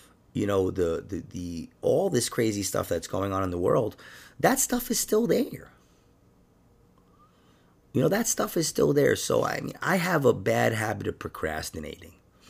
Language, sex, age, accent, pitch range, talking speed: English, male, 30-49, American, 80-135 Hz, 180 wpm